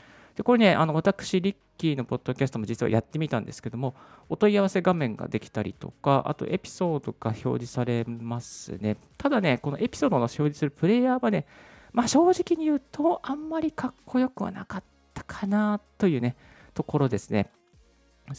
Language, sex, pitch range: Japanese, male, 115-185 Hz